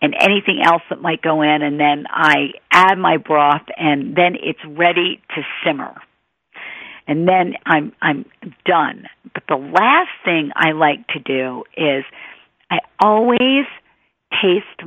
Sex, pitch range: female, 160-200 Hz